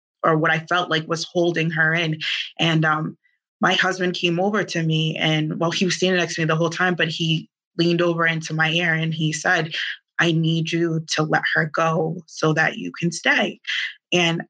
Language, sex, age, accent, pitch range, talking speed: English, female, 20-39, American, 160-180 Hz, 210 wpm